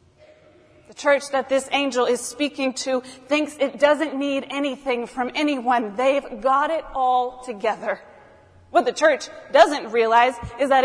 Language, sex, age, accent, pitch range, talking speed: English, female, 30-49, American, 240-285 Hz, 150 wpm